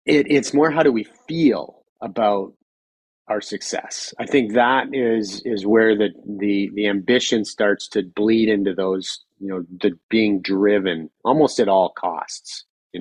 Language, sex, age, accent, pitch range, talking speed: English, male, 30-49, American, 105-135 Hz, 160 wpm